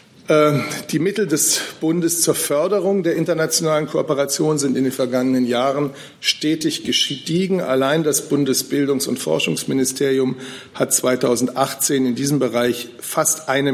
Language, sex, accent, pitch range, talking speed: German, male, German, 130-170 Hz, 120 wpm